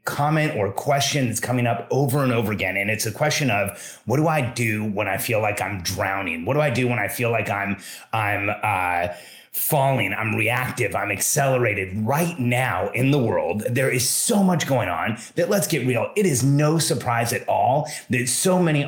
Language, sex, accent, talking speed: English, male, American, 205 wpm